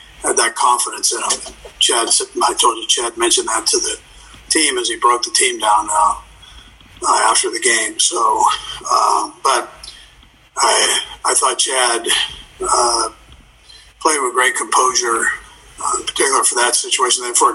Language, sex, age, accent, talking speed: English, male, 50-69, American, 165 wpm